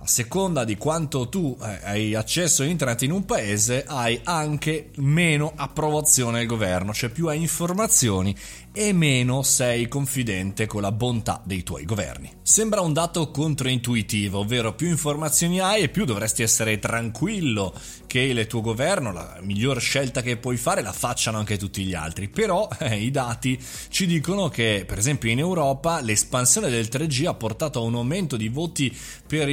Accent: native